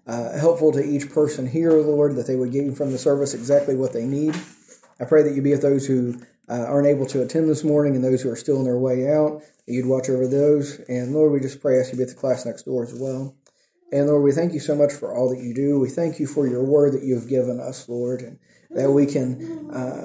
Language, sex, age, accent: English, male, 40-59, American